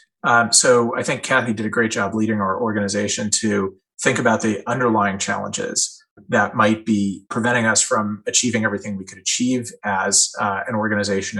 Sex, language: male, English